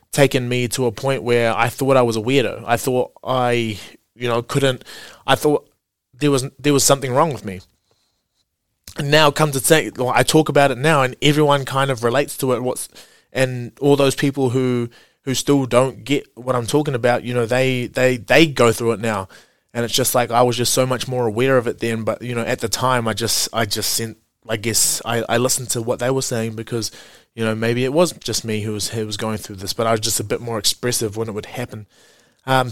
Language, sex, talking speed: English, male, 245 wpm